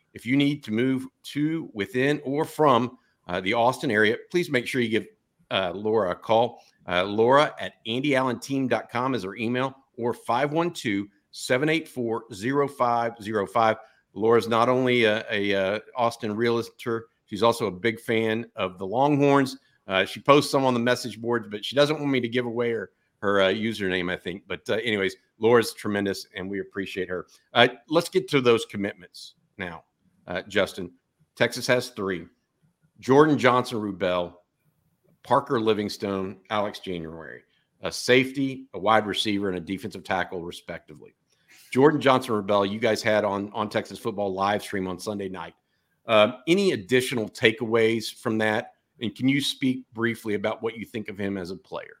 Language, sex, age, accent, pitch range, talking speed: English, male, 50-69, American, 100-130 Hz, 165 wpm